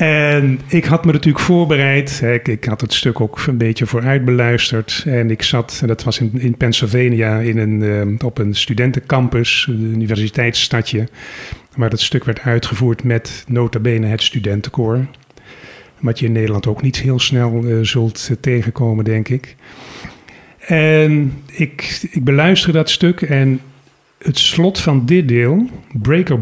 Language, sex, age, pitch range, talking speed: Dutch, male, 40-59, 115-140 Hz, 145 wpm